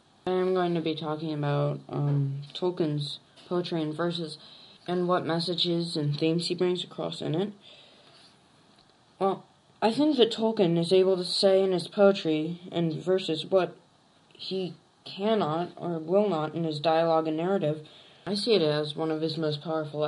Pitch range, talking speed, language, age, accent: 155-185 Hz, 165 wpm, English, 10-29, American